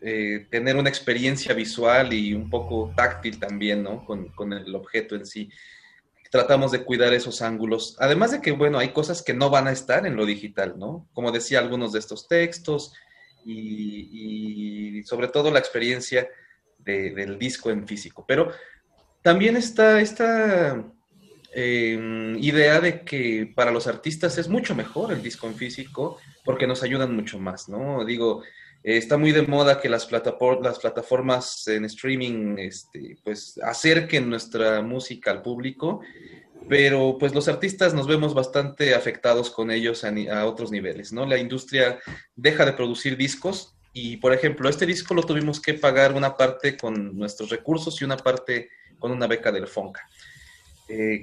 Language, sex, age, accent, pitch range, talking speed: Spanish, male, 30-49, Mexican, 110-145 Hz, 160 wpm